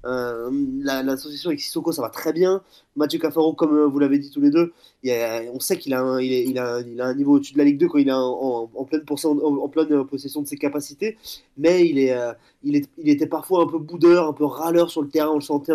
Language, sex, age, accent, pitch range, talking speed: French, male, 20-39, French, 140-165 Hz, 280 wpm